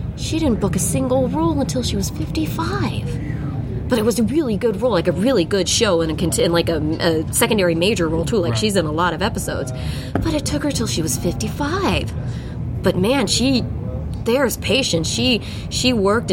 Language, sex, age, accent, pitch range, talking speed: English, female, 20-39, American, 150-180 Hz, 200 wpm